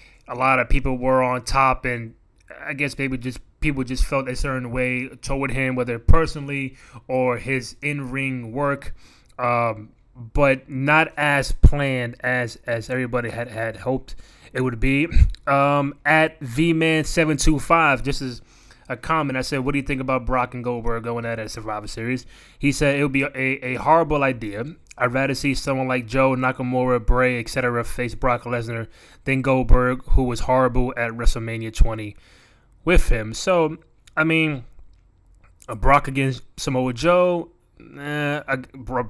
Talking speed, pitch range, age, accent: 165 wpm, 120-145 Hz, 20-39, American